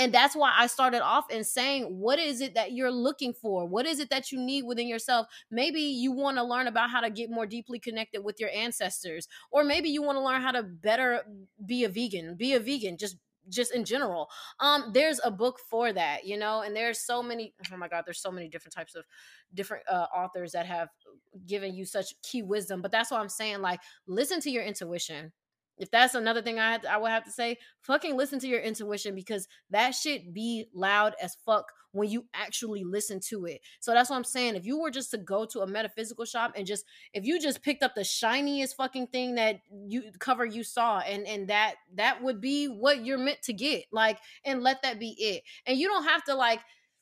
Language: English